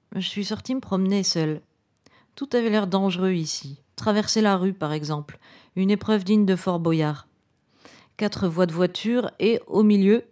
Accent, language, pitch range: French, French, 180-215 Hz